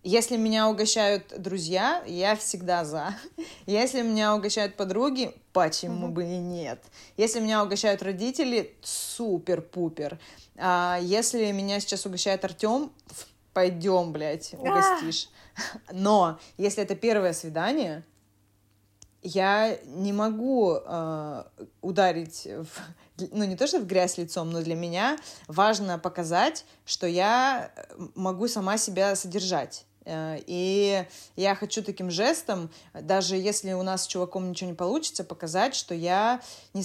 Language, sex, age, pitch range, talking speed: Russian, female, 20-39, 175-215 Hz, 120 wpm